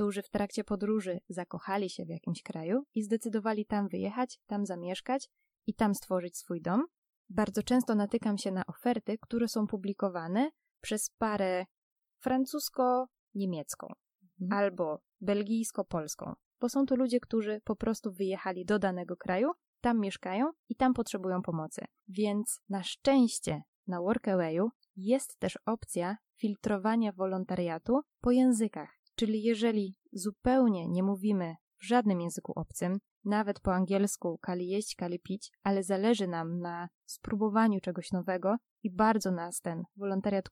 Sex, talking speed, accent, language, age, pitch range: female, 135 wpm, native, Polish, 20-39, 185-230 Hz